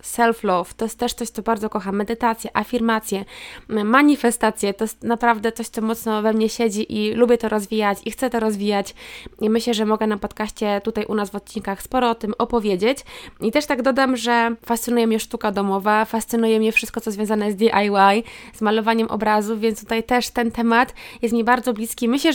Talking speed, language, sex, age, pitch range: 195 wpm, Polish, female, 20-39, 205-235 Hz